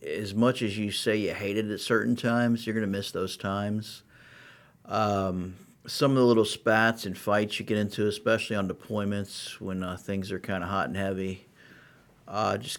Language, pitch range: English, 95-110 Hz